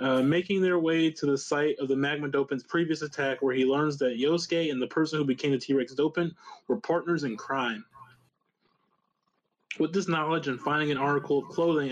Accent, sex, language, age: American, male, English, 20-39